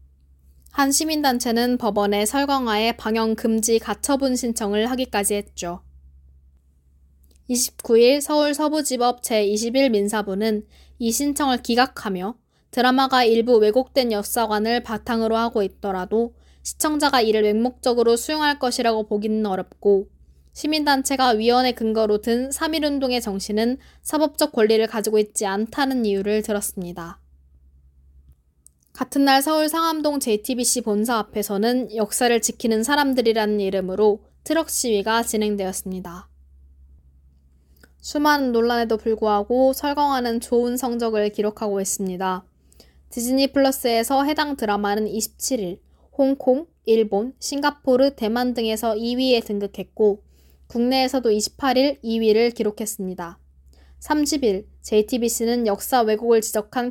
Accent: native